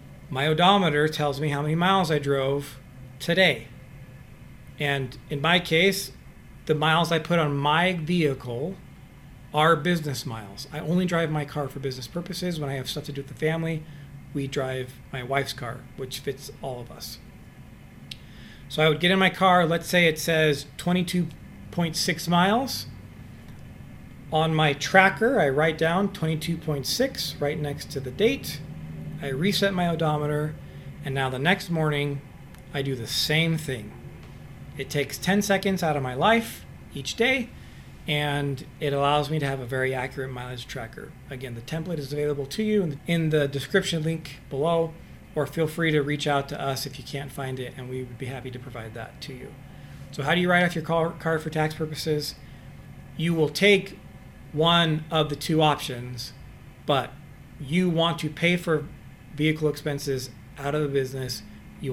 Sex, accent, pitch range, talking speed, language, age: male, American, 135-165 Hz, 170 wpm, English, 40-59